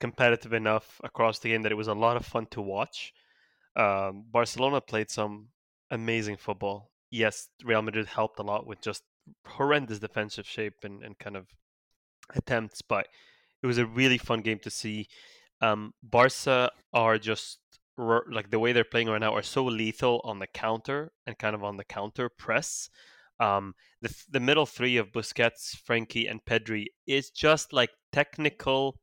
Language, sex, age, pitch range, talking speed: English, male, 20-39, 110-135 Hz, 170 wpm